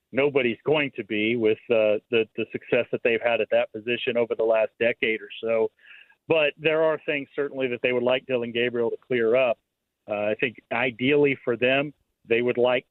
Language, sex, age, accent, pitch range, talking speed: English, male, 40-59, American, 115-130 Hz, 205 wpm